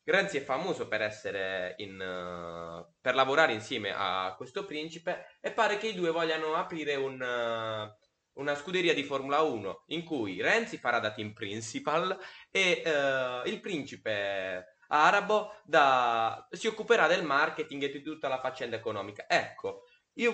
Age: 20-39